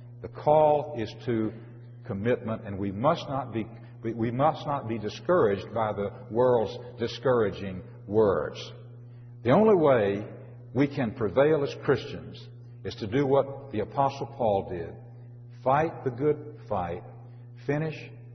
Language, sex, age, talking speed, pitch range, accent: French, male, 60-79, 135 wpm, 115-140 Hz, American